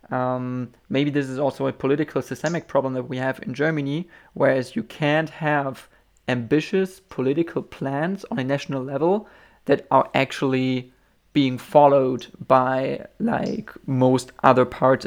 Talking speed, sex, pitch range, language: 140 wpm, male, 130-150 Hz, German